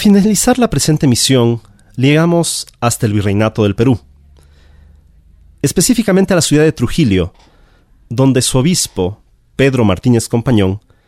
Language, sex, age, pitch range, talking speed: Spanish, male, 40-59, 100-135 Hz, 120 wpm